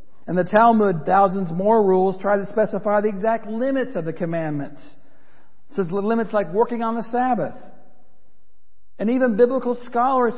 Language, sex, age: English, male, 50-69